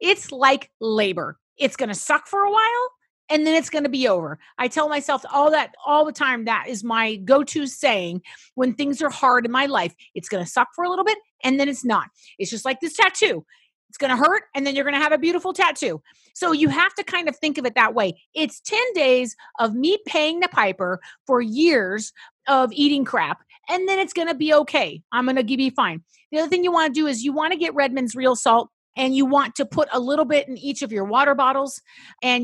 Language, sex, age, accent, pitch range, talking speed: English, female, 40-59, American, 235-300 Hz, 250 wpm